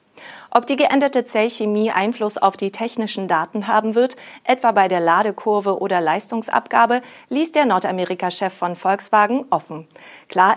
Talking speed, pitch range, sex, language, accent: 135 wpm, 185-240 Hz, female, German, German